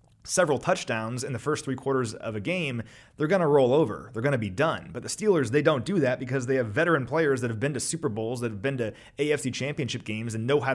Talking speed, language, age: 270 wpm, English, 30-49